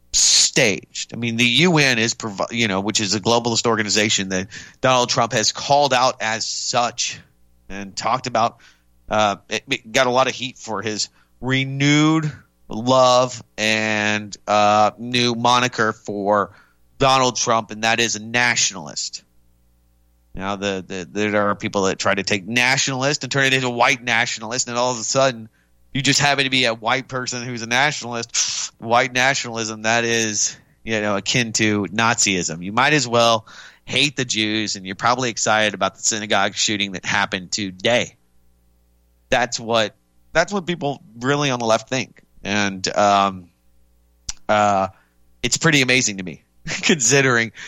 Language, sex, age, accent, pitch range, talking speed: English, male, 30-49, American, 100-125 Hz, 160 wpm